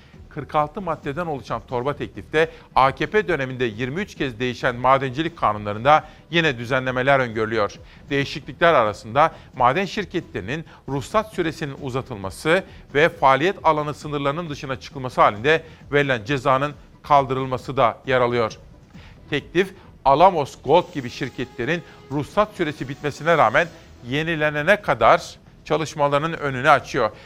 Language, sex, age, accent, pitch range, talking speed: Turkish, male, 40-59, native, 130-160 Hz, 110 wpm